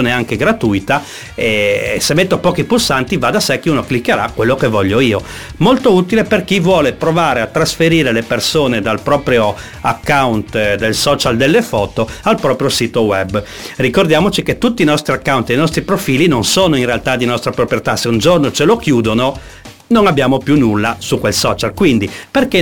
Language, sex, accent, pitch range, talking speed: Italian, male, native, 120-165 Hz, 185 wpm